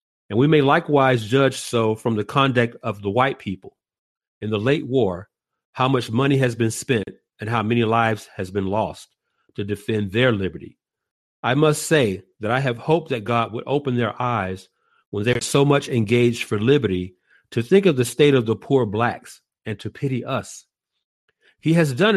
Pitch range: 110-135 Hz